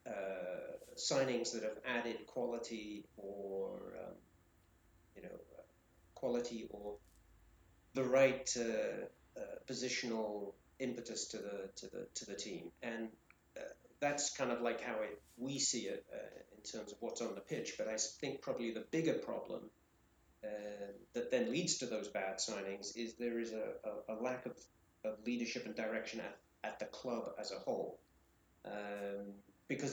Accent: British